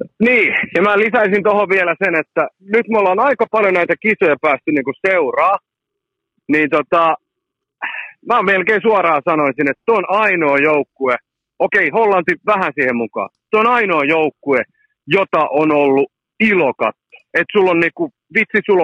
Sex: male